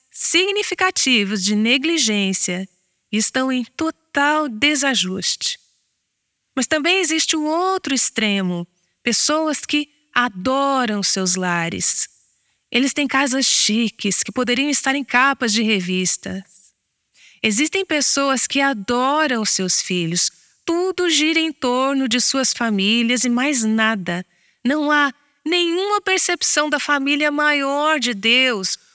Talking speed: 115 wpm